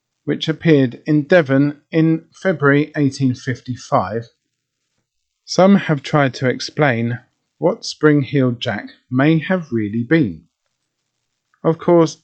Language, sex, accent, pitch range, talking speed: English, male, British, 120-155 Hz, 105 wpm